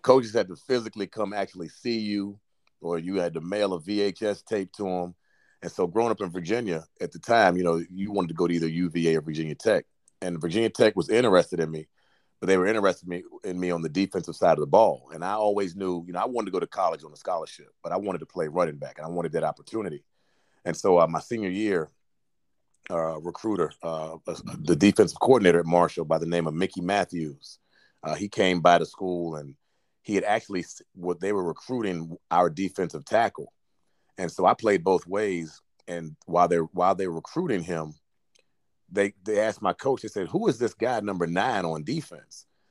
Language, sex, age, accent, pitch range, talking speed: English, male, 30-49, American, 85-95 Hz, 215 wpm